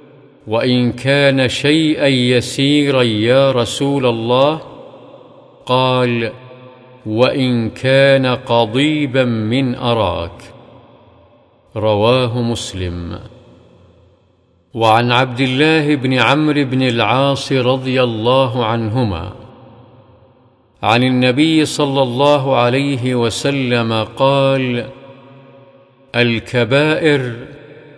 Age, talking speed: 50-69, 70 wpm